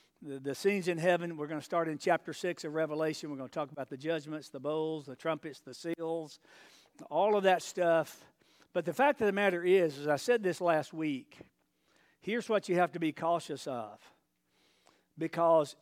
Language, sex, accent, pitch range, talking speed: English, male, American, 150-200 Hz, 195 wpm